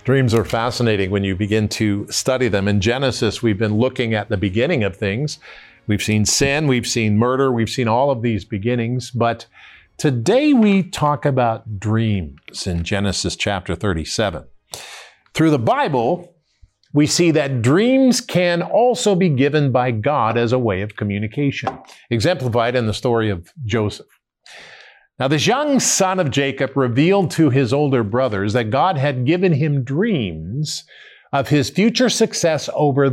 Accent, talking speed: American, 160 wpm